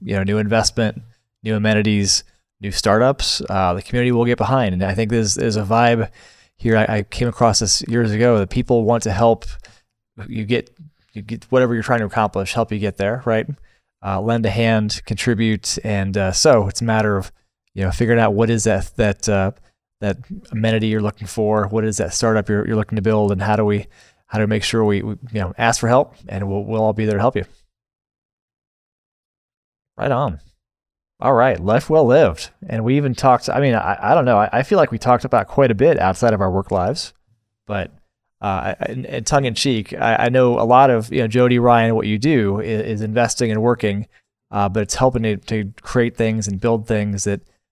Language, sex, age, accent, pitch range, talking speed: English, male, 20-39, American, 100-115 Hz, 220 wpm